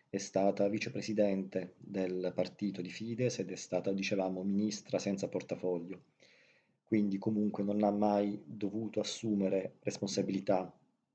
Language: Italian